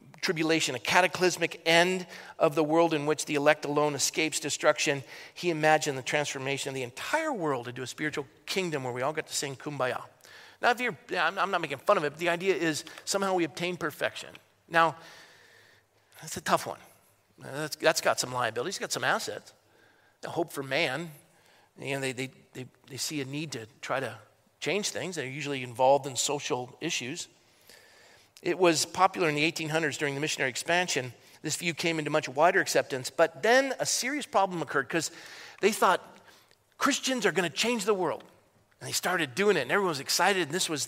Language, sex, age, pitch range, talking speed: English, male, 40-59, 140-175 Hz, 200 wpm